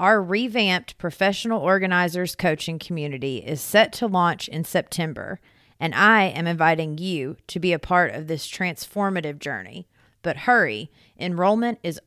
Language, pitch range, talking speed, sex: English, 160-210 Hz, 145 wpm, female